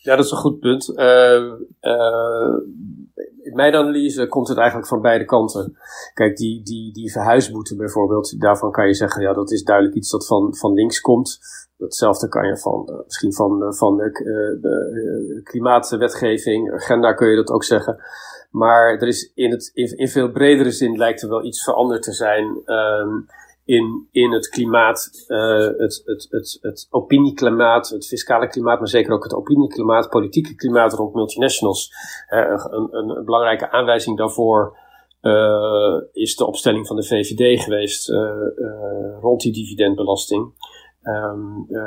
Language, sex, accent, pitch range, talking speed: Dutch, male, Dutch, 105-125 Hz, 160 wpm